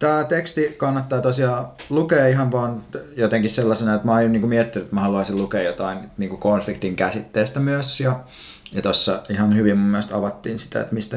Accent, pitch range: native, 105-135 Hz